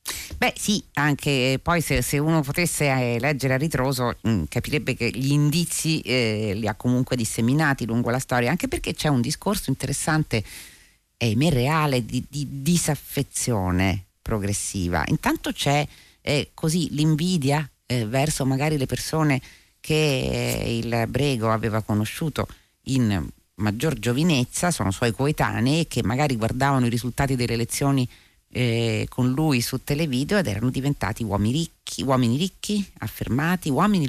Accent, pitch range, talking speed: native, 115-155 Hz, 145 wpm